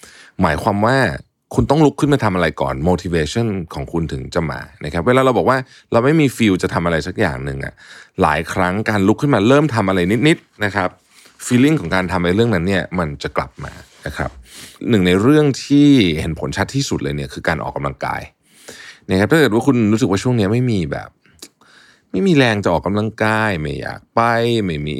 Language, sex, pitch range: Thai, male, 90-115 Hz